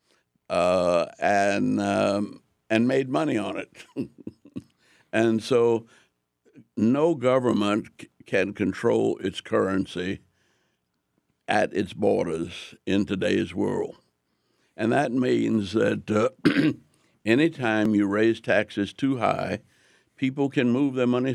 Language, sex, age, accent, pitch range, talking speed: English, male, 60-79, American, 100-125 Hz, 110 wpm